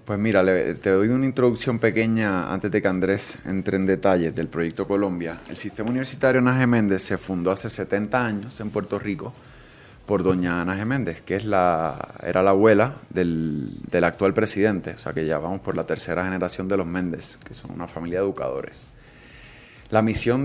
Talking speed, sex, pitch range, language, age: 195 wpm, male, 95-120 Hz, Spanish, 30-49